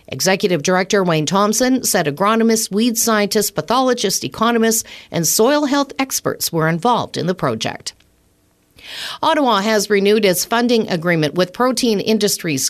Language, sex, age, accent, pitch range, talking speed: English, female, 50-69, American, 165-225 Hz, 130 wpm